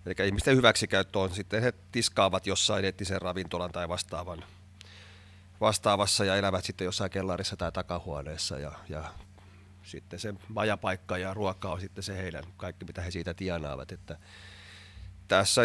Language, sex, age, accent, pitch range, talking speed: Finnish, male, 30-49, native, 90-100 Hz, 145 wpm